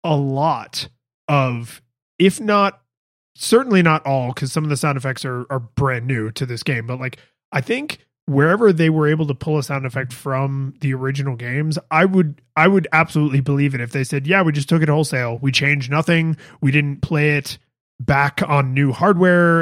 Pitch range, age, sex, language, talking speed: 135-160 Hz, 20-39, male, English, 200 wpm